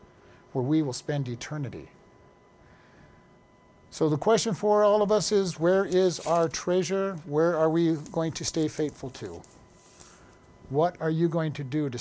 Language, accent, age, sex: English, American, 50-69, male